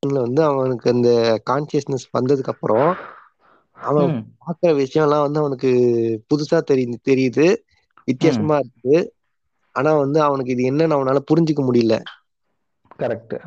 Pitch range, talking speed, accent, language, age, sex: 130-155 Hz, 65 wpm, native, Tamil, 20-39, male